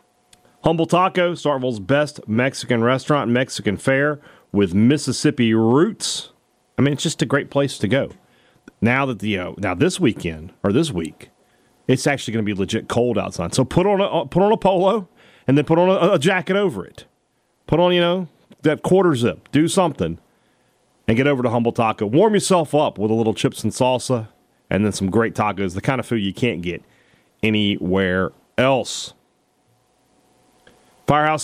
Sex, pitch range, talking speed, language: male, 110-150 Hz, 180 wpm, English